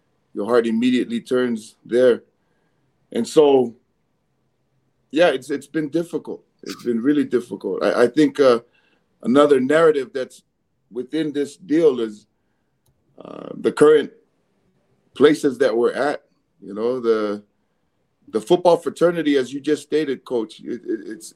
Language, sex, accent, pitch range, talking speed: English, male, American, 120-155 Hz, 130 wpm